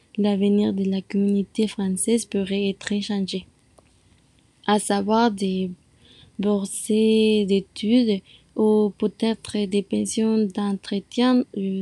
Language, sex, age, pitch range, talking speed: French, female, 20-39, 200-240 Hz, 95 wpm